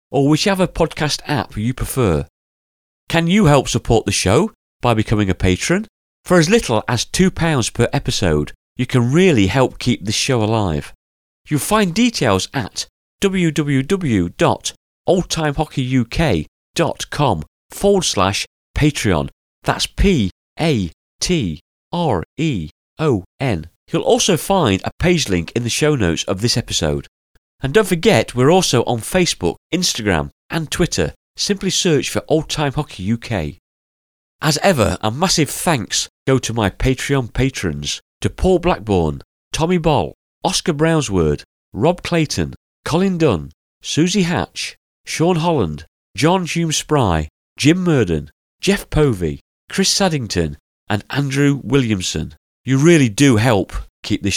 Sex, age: male, 40-59